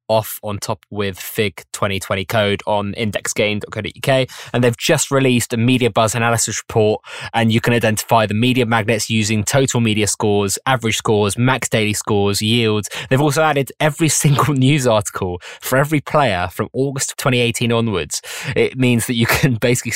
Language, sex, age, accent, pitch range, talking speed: English, male, 20-39, British, 100-125 Hz, 165 wpm